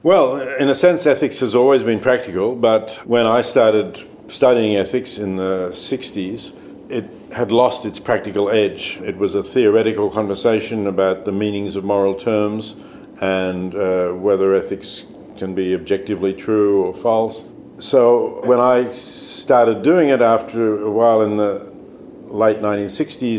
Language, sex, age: Spanish, male, 50-69